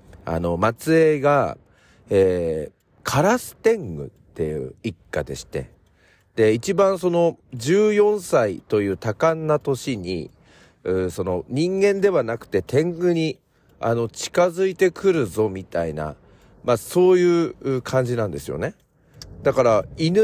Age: 40-59